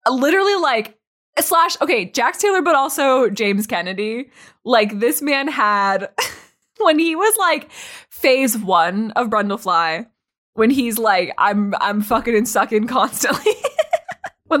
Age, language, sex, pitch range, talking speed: 20-39, English, female, 220-340 Hz, 130 wpm